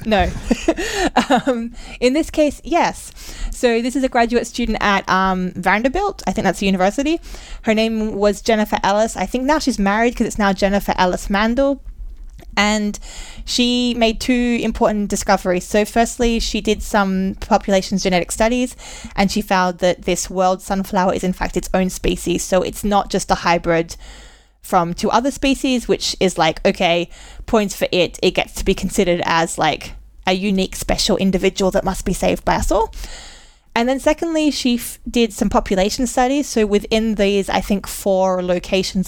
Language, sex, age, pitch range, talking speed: English, female, 20-39, 190-235 Hz, 175 wpm